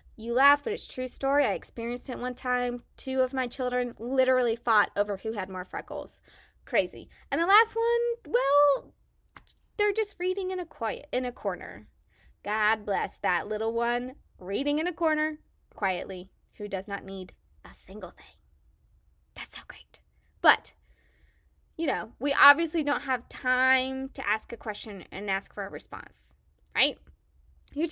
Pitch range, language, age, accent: 220-305 Hz, English, 20-39, American